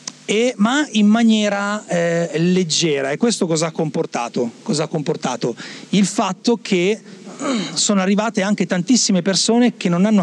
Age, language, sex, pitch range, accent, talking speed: 40-59, Italian, male, 165-215 Hz, native, 130 wpm